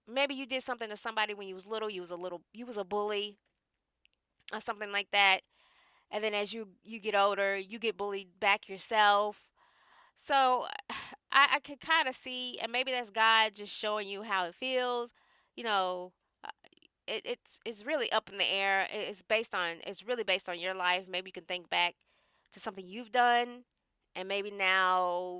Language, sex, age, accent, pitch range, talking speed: English, female, 20-39, American, 185-225 Hz, 195 wpm